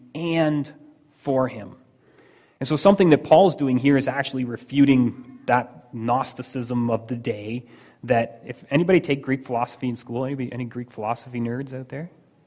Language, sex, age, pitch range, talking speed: English, male, 30-49, 120-150 Hz, 160 wpm